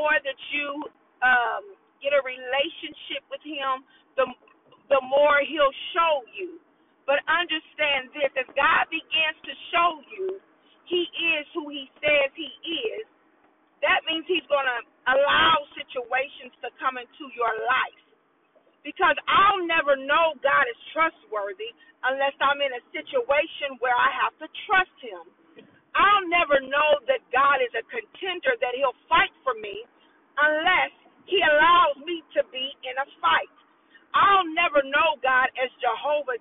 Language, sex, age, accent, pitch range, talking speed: English, female, 40-59, American, 275-345 Hz, 145 wpm